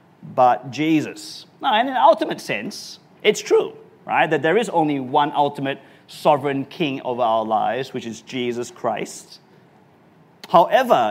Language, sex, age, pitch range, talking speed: English, male, 30-49, 140-190 Hz, 140 wpm